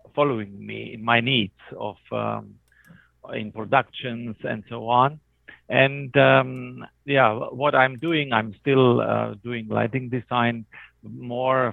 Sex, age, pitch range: male, 50-69, 115-140 Hz